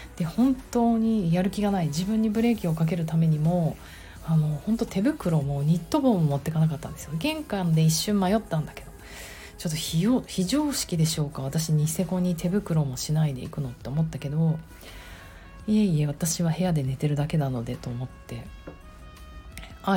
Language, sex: Japanese, female